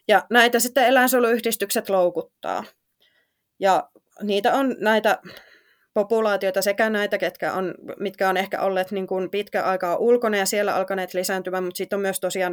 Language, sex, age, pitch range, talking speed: Finnish, female, 20-39, 190-225 Hz, 155 wpm